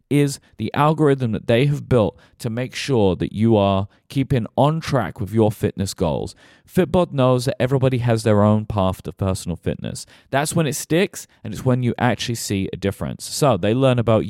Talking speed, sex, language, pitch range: 195 wpm, male, English, 100-130 Hz